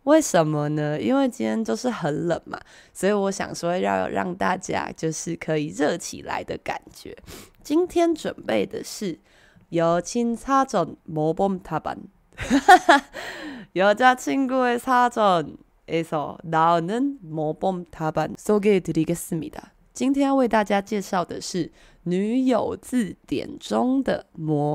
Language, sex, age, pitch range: Chinese, female, 20-39, 165-245 Hz